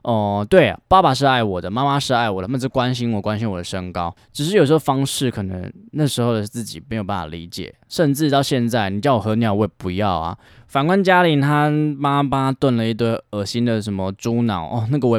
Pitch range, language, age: 100-140 Hz, Chinese, 20-39